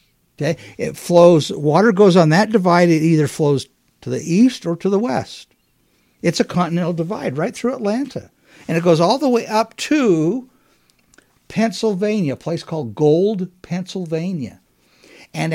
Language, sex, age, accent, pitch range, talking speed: English, male, 60-79, American, 145-200 Hz, 150 wpm